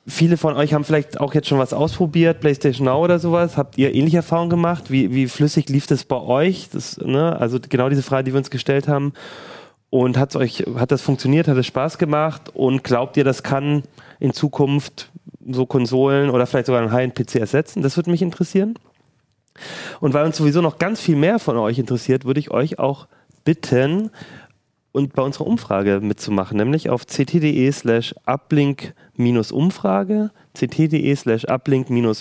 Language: German